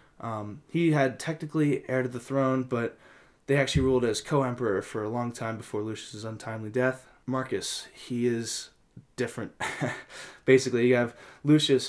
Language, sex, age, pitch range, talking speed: English, male, 10-29, 115-135 Hz, 150 wpm